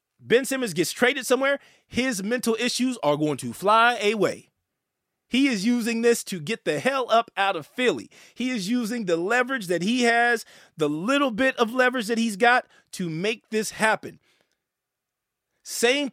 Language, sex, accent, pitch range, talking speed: English, male, American, 185-245 Hz, 170 wpm